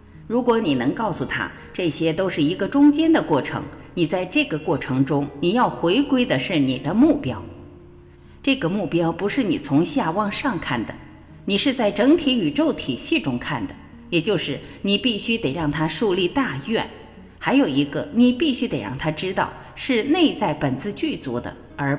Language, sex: Chinese, female